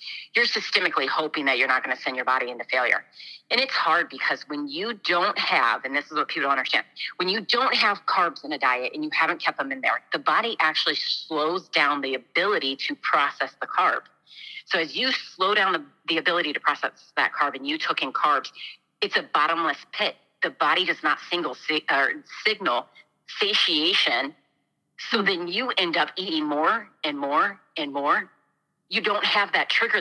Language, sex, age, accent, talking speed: English, female, 40-59, American, 195 wpm